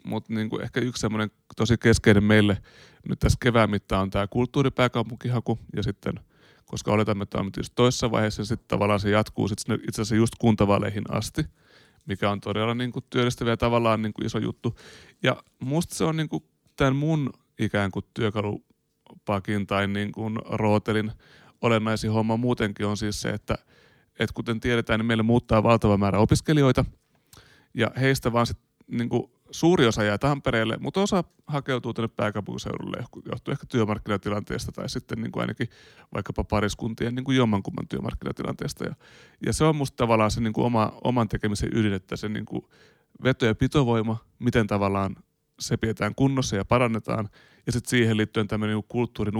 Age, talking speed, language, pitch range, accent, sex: 30-49, 160 wpm, Finnish, 105-120 Hz, native, male